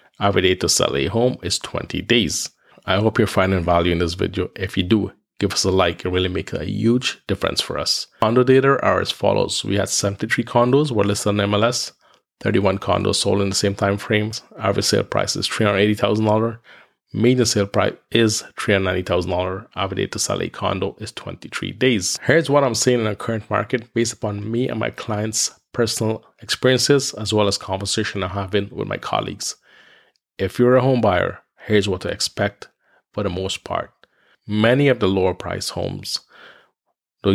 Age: 20-39